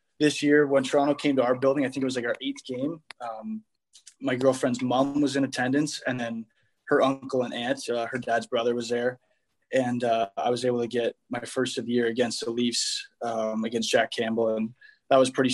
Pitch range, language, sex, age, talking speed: 115-135 Hz, English, male, 20-39, 225 wpm